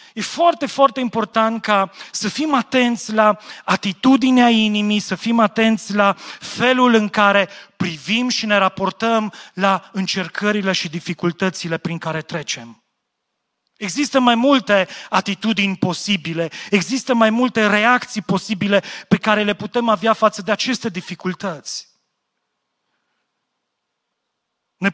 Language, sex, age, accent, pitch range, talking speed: Romanian, male, 40-59, native, 195-245 Hz, 120 wpm